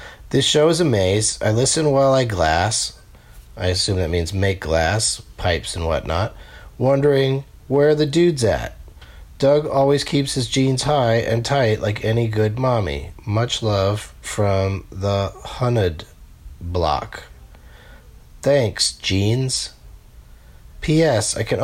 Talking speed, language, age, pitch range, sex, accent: 130 wpm, English, 40-59, 100-145 Hz, male, American